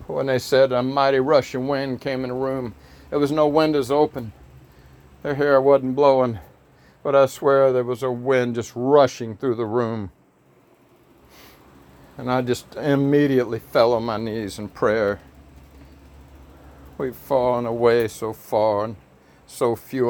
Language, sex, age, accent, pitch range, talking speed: English, male, 60-79, American, 115-155 Hz, 150 wpm